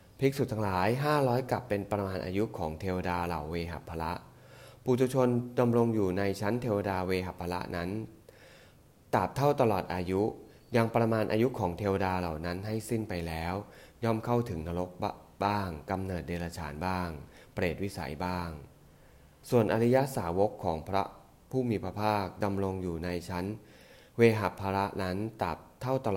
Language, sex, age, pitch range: English, male, 20-39, 85-110 Hz